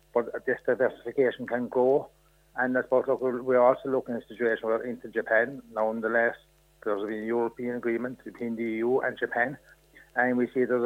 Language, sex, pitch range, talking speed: English, male, 110-125 Hz, 175 wpm